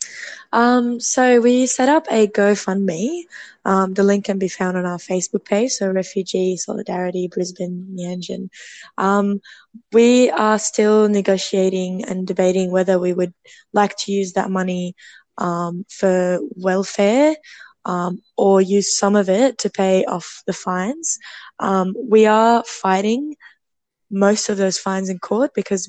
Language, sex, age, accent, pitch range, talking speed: English, female, 10-29, Australian, 185-210 Hz, 145 wpm